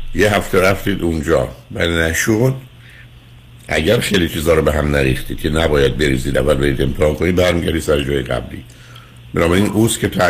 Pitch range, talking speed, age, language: 70-90 Hz, 180 wpm, 60-79, Persian